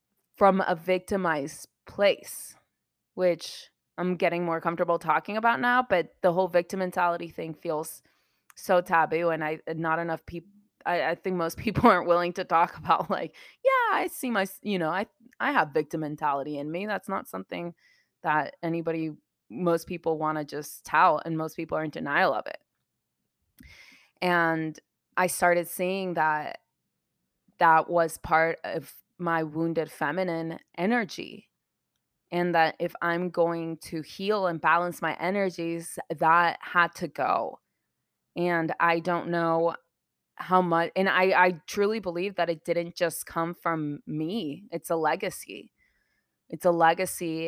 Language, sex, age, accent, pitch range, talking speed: English, female, 20-39, American, 160-180 Hz, 155 wpm